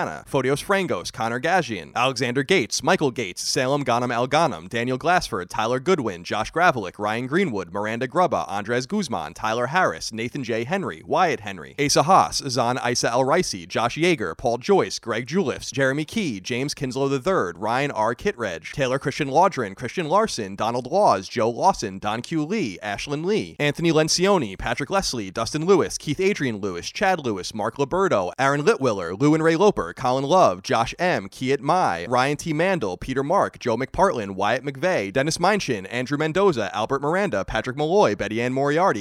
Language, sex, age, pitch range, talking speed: English, male, 30-49, 115-165 Hz, 170 wpm